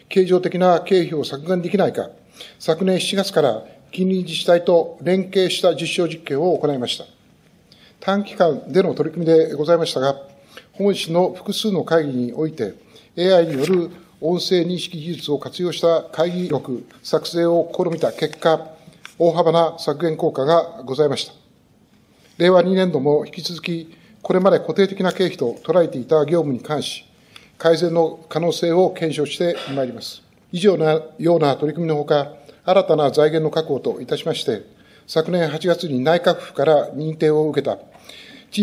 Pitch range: 155-180 Hz